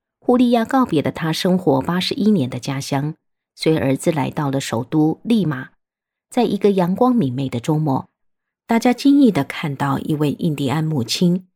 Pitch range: 140-200 Hz